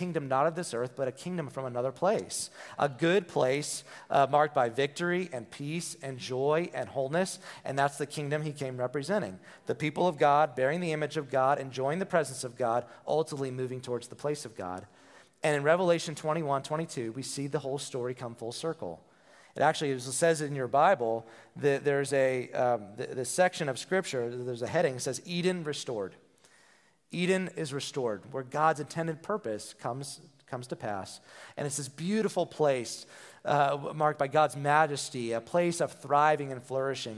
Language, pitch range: English, 130-155 Hz